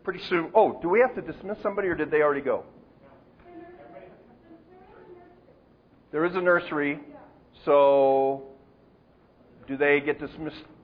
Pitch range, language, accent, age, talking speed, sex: 120-175 Hz, English, American, 50-69, 125 wpm, male